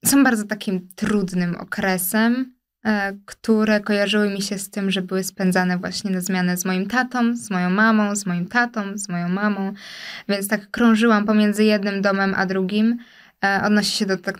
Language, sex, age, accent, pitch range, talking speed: Polish, female, 20-39, native, 195-215 Hz, 170 wpm